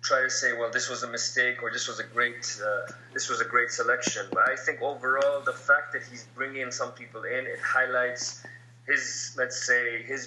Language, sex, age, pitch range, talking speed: English, male, 20-39, 120-130 Hz, 215 wpm